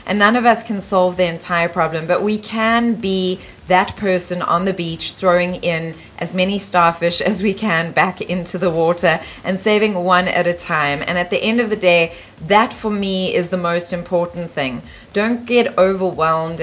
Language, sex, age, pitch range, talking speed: English, female, 20-39, 170-205 Hz, 195 wpm